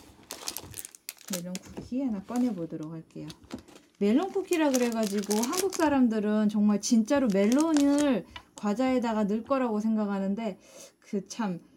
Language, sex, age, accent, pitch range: Korean, female, 20-39, native, 195-255 Hz